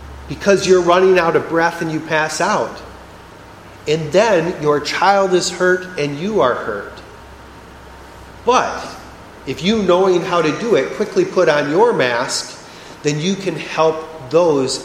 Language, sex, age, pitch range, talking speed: English, male, 40-59, 145-180 Hz, 155 wpm